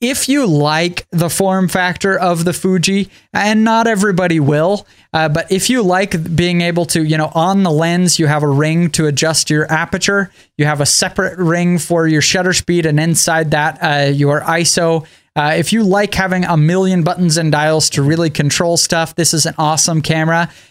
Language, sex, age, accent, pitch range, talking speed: English, male, 20-39, American, 155-190 Hz, 195 wpm